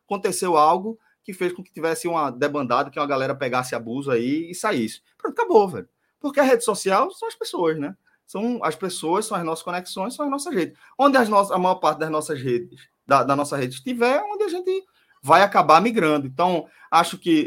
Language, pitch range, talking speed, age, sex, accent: Portuguese, 160-245 Hz, 210 wpm, 20-39, male, Brazilian